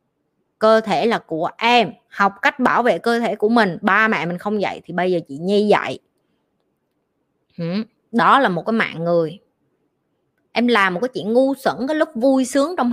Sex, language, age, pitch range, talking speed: female, Vietnamese, 20-39, 195-265 Hz, 195 wpm